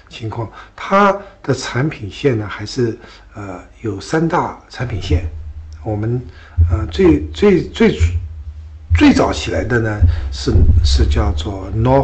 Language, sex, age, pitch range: Chinese, male, 60-79, 90-120 Hz